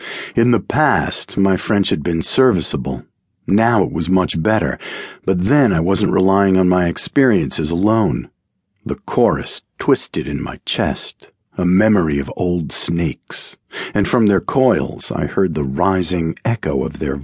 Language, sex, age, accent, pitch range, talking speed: English, male, 50-69, American, 80-110 Hz, 155 wpm